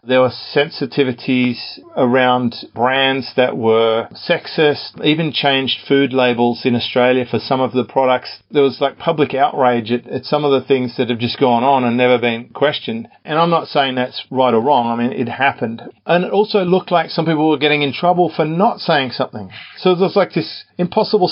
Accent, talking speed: Australian, 200 wpm